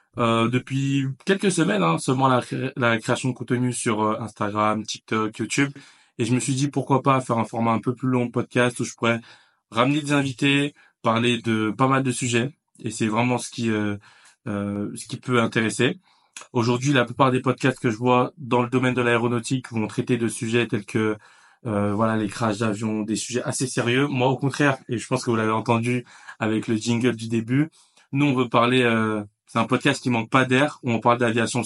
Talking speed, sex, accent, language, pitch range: 215 wpm, male, French, French, 115-130 Hz